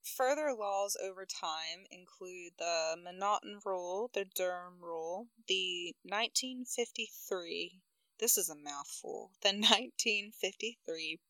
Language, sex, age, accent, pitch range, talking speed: English, female, 20-39, American, 180-225 Hz, 120 wpm